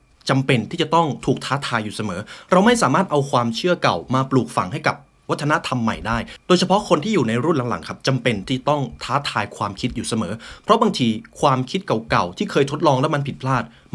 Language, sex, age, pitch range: Thai, male, 20-39, 115-145 Hz